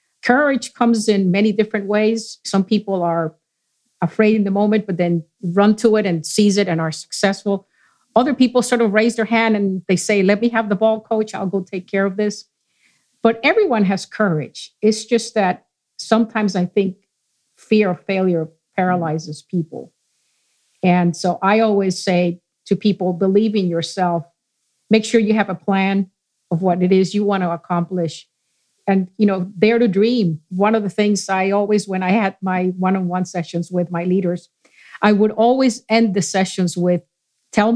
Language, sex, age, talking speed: English, female, 50-69, 185 wpm